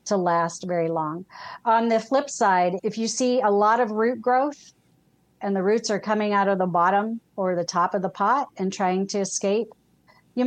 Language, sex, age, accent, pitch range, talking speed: English, female, 40-59, American, 180-225 Hz, 205 wpm